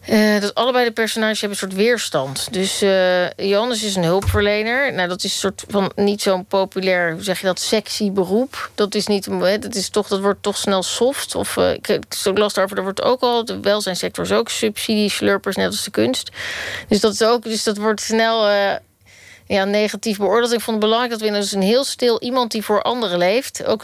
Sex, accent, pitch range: female, Dutch, 190-220 Hz